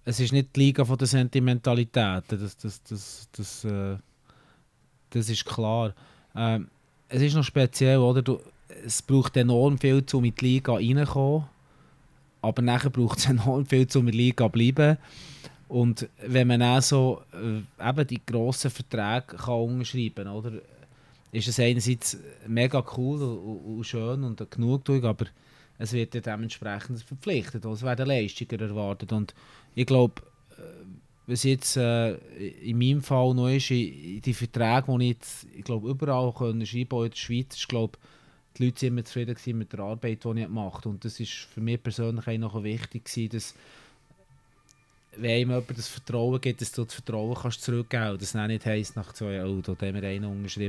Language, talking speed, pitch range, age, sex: German, 180 wpm, 110-130 Hz, 20-39, male